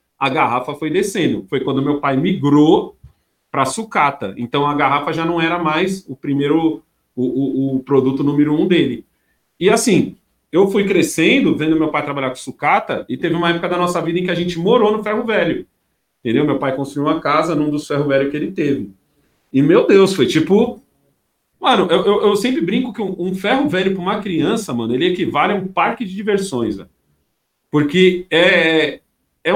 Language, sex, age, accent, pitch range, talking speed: Portuguese, male, 40-59, Brazilian, 145-195 Hz, 195 wpm